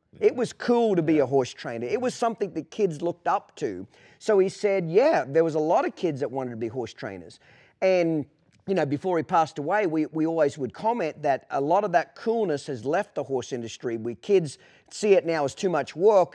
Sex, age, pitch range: male, 40-59, 135-185 Hz